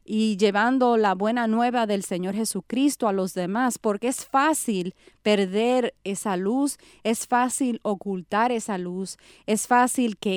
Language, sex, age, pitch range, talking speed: English, female, 30-49, 185-235 Hz, 145 wpm